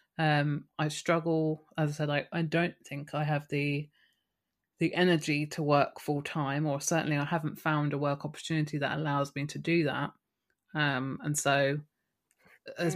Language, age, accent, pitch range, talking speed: English, 30-49, British, 150-170 Hz, 165 wpm